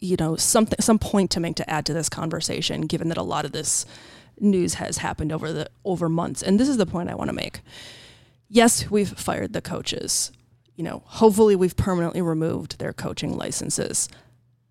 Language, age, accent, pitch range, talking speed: English, 20-39, American, 120-200 Hz, 195 wpm